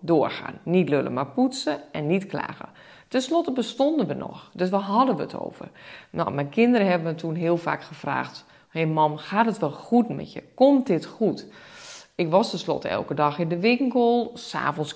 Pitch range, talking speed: 155-225 Hz, 195 wpm